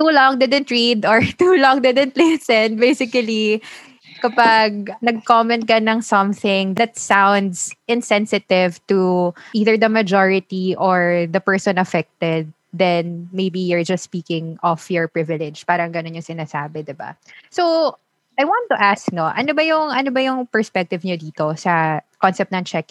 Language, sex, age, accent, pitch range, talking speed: Filipino, female, 20-39, native, 175-220 Hz, 155 wpm